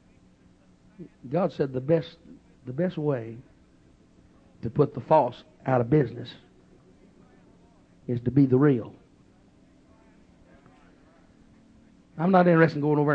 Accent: American